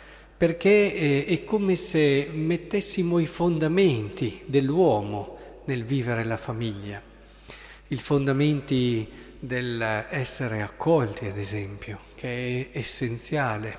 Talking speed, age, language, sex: 95 wpm, 50-69, Italian, male